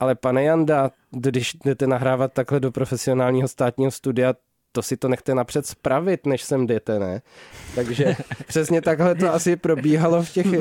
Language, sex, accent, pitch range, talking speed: Czech, male, native, 135-170 Hz, 165 wpm